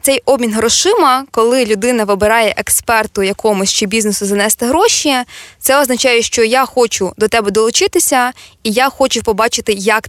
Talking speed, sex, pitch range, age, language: 150 wpm, female, 210-250 Hz, 20-39, Ukrainian